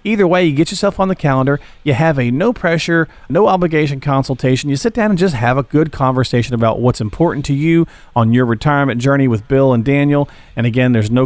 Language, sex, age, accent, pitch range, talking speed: English, male, 40-59, American, 125-165 Hz, 215 wpm